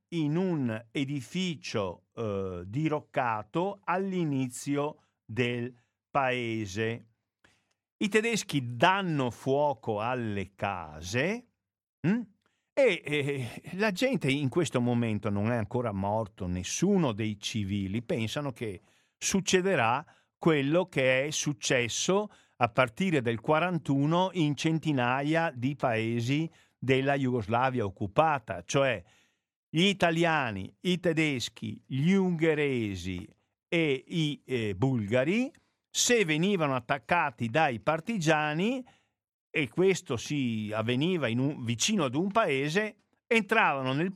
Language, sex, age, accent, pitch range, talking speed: Italian, male, 50-69, native, 115-165 Hz, 100 wpm